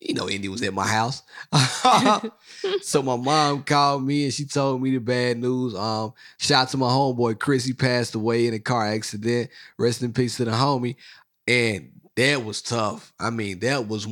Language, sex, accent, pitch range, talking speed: English, male, American, 120-160 Hz, 200 wpm